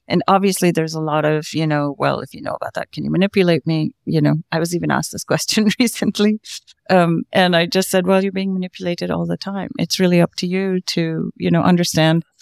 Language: English